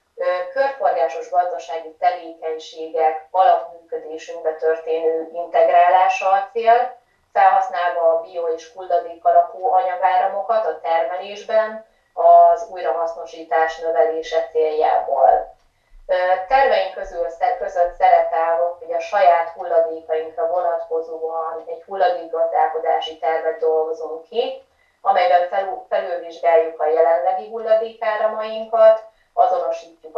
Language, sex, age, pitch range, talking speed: Hungarian, female, 30-49, 165-200 Hz, 80 wpm